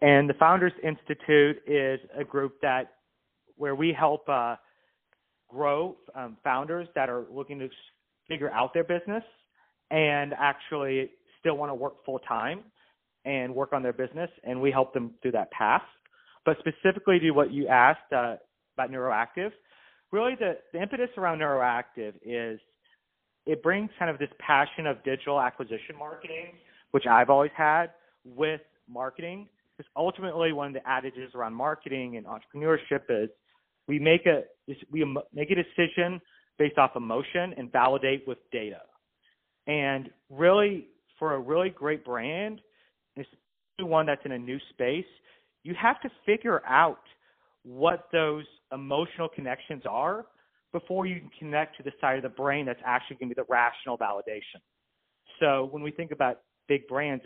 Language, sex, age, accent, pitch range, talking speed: English, male, 30-49, American, 130-170 Hz, 155 wpm